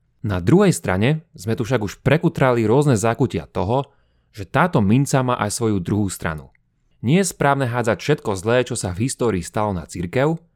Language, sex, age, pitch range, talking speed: Slovak, male, 30-49, 100-135 Hz, 180 wpm